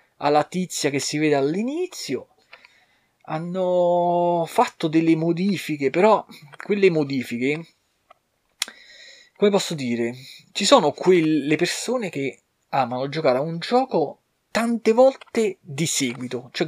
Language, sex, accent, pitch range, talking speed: Italian, male, native, 135-185 Hz, 110 wpm